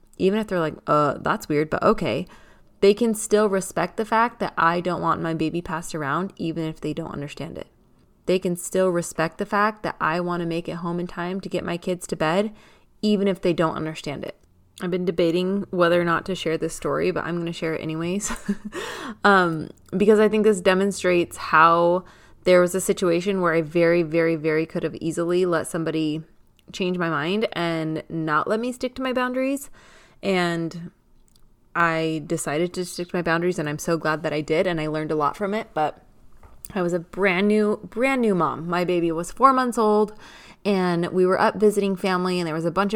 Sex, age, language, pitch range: female, 20-39, English, 165-200 Hz